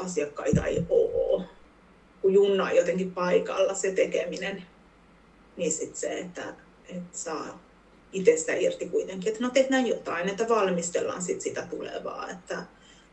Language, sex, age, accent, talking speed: Finnish, female, 30-49, native, 135 wpm